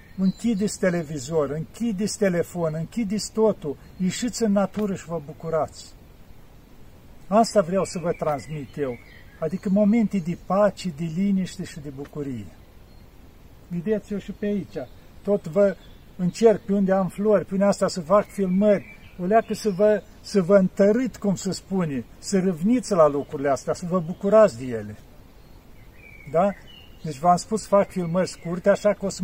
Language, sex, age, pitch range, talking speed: Romanian, male, 50-69, 155-205 Hz, 155 wpm